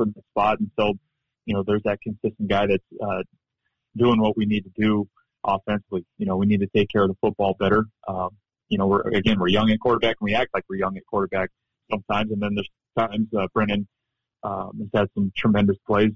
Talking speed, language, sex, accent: 225 wpm, English, male, American